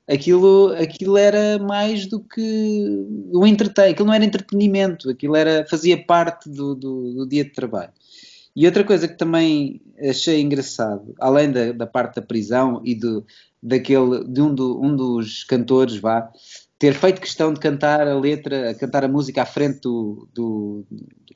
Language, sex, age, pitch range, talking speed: Portuguese, male, 20-39, 120-165 Hz, 170 wpm